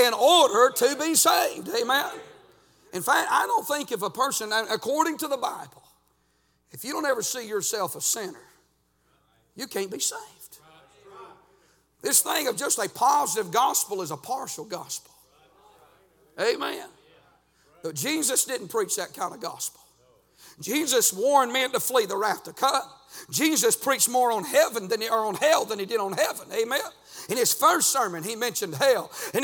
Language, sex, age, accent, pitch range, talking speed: English, male, 50-69, American, 240-310 Hz, 165 wpm